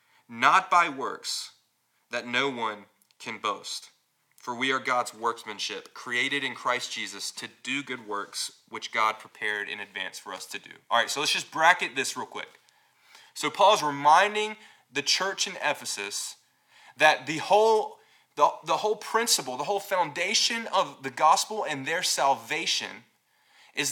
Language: English